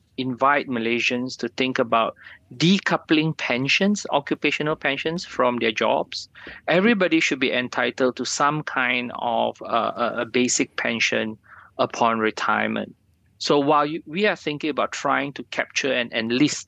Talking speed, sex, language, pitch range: 135 wpm, male, English, 120-155 Hz